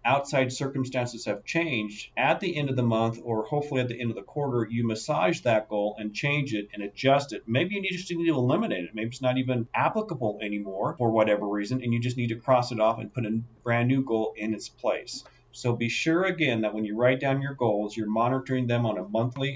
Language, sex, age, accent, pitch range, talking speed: English, male, 40-59, American, 110-135 Hz, 240 wpm